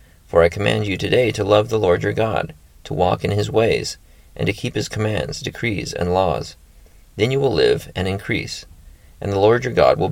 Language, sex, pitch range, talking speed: English, male, 85-110 Hz, 215 wpm